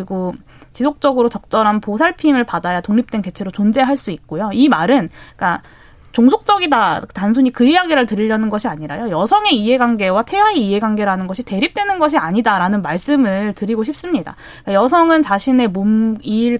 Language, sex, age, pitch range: Korean, female, 20-39, 205-280 Hz